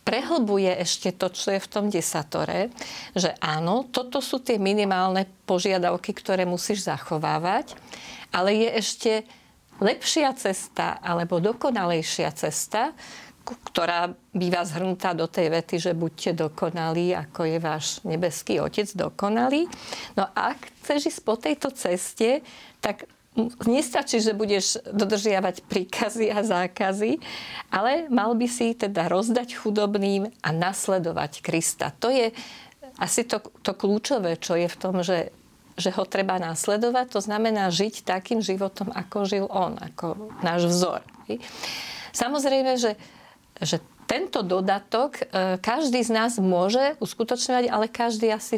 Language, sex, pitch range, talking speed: Slovak, female, 180-230 Hz, 130 wpm